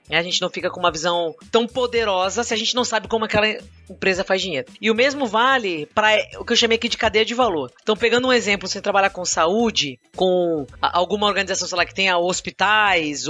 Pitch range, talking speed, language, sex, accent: 180-245 Hz, 220 wpm, Portuguese, female, Brazilian